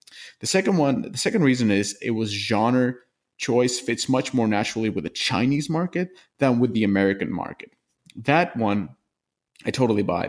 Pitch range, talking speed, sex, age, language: 100-125 Hz, 170 wpm, male, 20-39, English